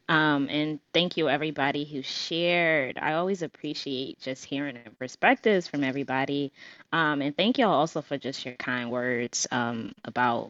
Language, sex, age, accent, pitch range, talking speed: English, female, 20-39, American, 140-175 Hz, 150 wpm